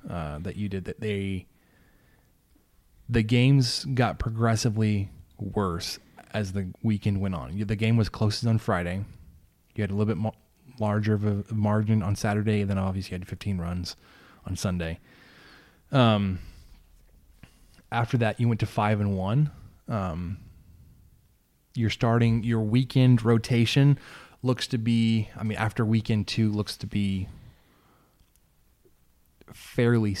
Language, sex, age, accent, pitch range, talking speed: English, male, 20-39, American, 95-115 Hz, 135 wpm